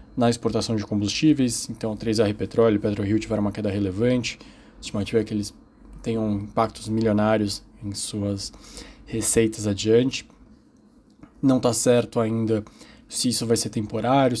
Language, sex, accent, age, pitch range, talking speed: Portuguese, male, Brazilian, 20-39, 110-120 Hz, 145 wpm